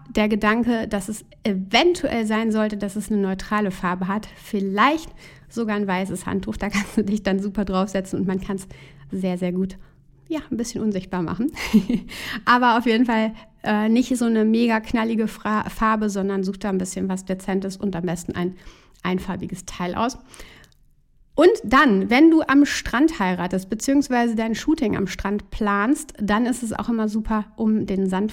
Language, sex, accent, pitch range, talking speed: German, female, German, 190-230 Hz, 180 wpm